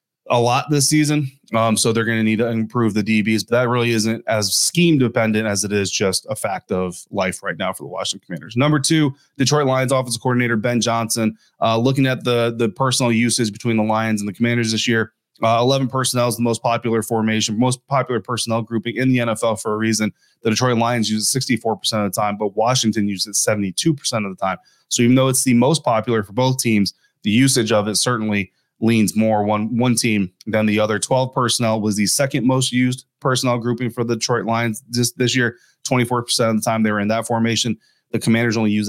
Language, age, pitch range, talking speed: English, 20-39, 105-125 Hz, 225 wpm